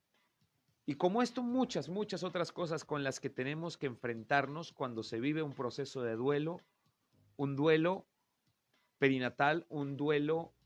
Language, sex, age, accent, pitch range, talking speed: Spanish, male, 40-59, Mexican, 130-165 Hz, 140 wpm